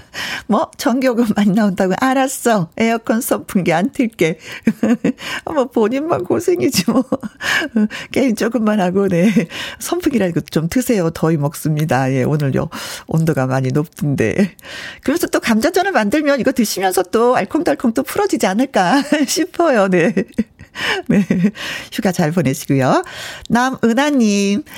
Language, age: Korean, 50-69